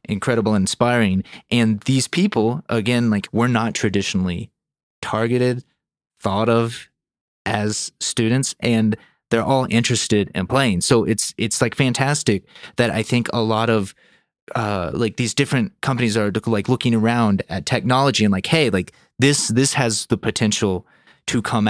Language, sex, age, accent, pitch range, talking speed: English, male, 30-49, American, 105-120 Hz, 150 wpm